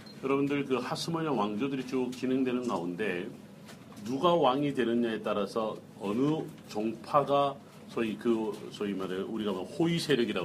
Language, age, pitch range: Korean, 40-59, 115-150 Hz